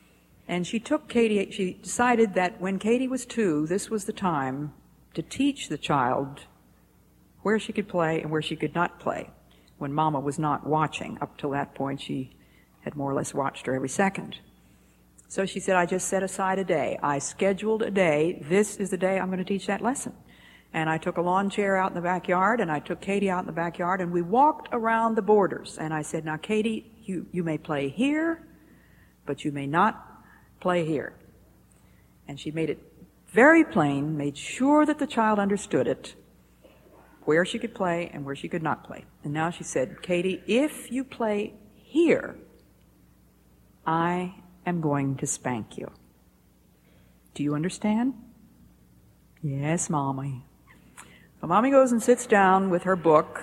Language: English